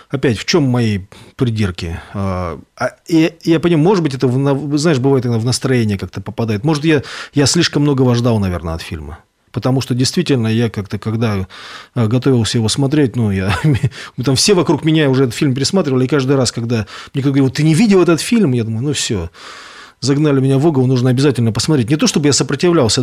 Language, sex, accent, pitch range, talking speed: Russian, male, native, 110-150 Hz, 195 wpm